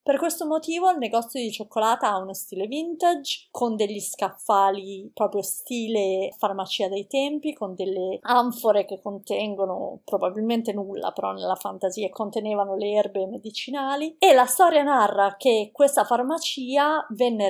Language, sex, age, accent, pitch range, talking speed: Italian, female, 30-49, native, 200-260 Hz, 140 wpm